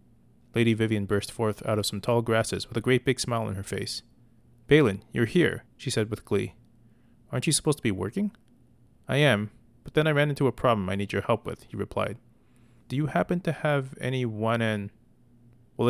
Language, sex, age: English, male, 30-49